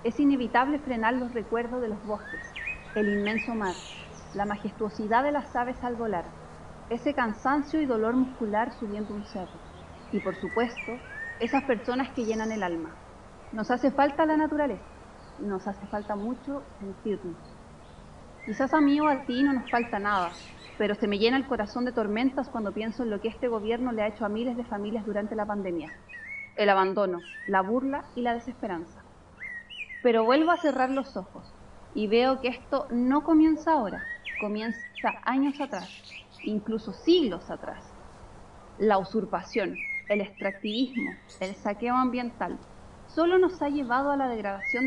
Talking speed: 160 wpm